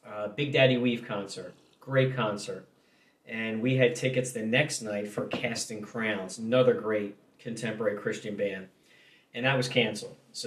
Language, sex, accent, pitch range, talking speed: English, male, American, 115-130 Hz, 155 wpm